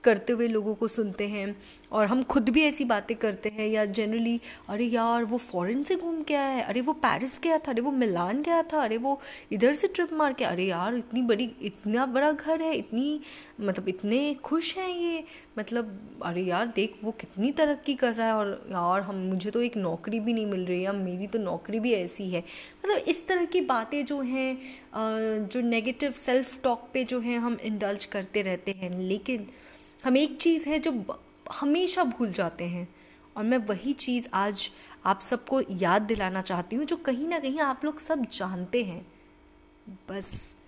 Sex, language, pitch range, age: female, English, 200-285 Hz, 20-39